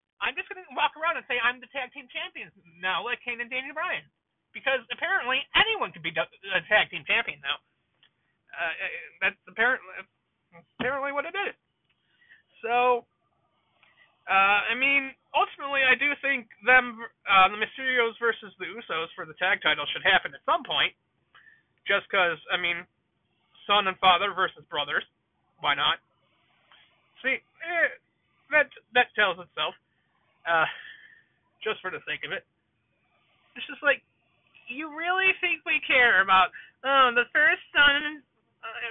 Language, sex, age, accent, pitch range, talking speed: English, male, 30-49, American, 230-320 Hz, 150 wpm